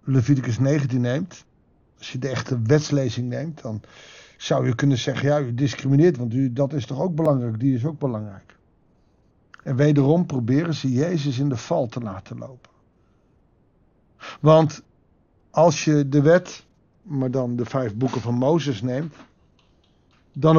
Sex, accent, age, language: male, Dutch, 60-79, Dutch